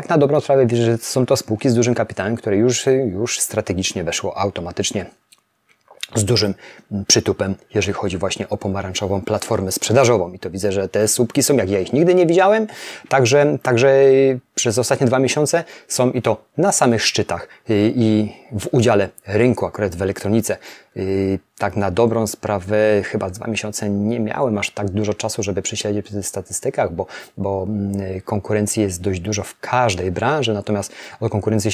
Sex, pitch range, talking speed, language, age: male, 100-125 Hz, 175 wpm, Polish, 30-49